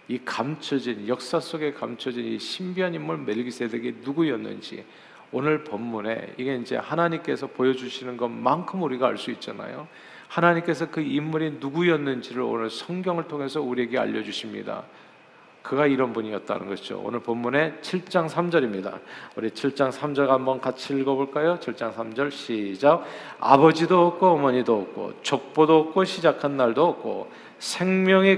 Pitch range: 115-160 Hz